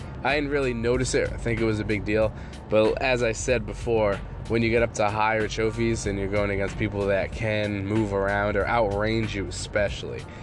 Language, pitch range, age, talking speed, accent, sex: English, 100-125 Hz, 20-39, 215 wpm, American, male